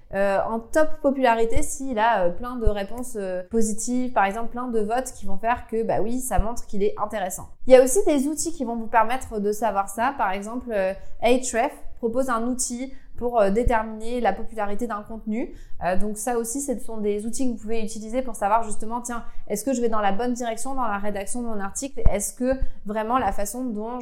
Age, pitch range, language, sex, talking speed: 20-39, 210-250 Hz, French, female, 220 wpm